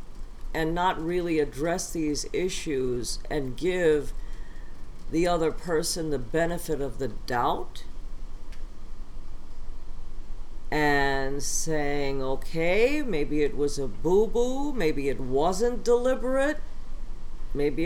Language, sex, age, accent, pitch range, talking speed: English, female, 50-69, American, 140-185 Hz, 95 wpm